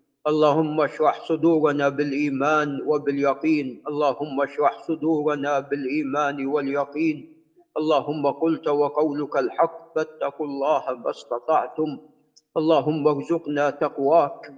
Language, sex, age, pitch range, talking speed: Arabic, male, 50-69, 140-155 Hz, 80 wpm